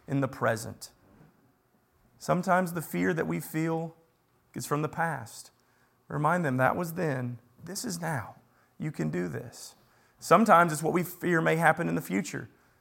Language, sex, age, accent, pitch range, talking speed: English, male, 30-49, American, 120-175 Hz, 165 wpm